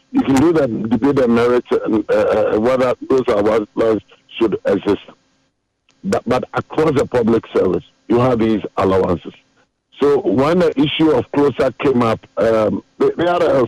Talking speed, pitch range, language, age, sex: 160 wpm, 115-170 Hz, English, 50-69, male